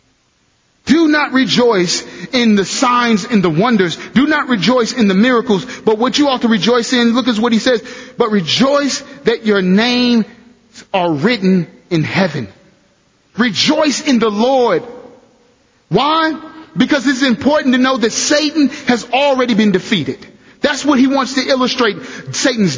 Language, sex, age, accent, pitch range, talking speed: English, male, 30-49, American, 220-265 Hz, 155 wpm